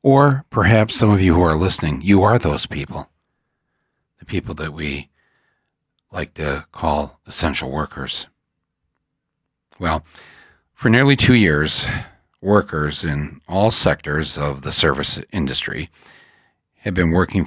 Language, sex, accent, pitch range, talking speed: English, male, American, 75-100 Hz, 125 wpm